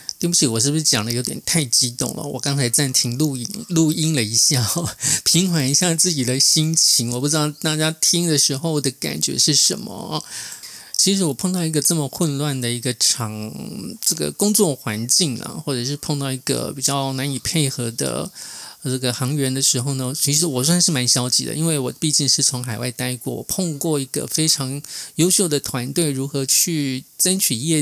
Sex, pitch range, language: male, 130-165 Hz, Chinese